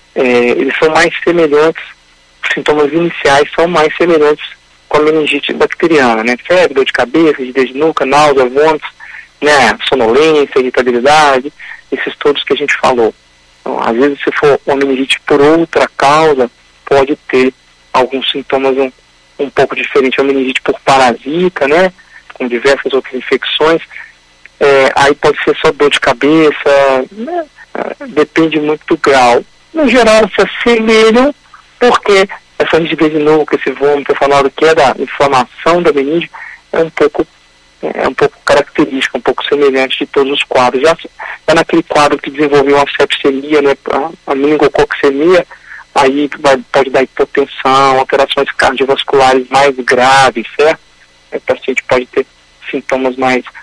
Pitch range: 135-165 Hz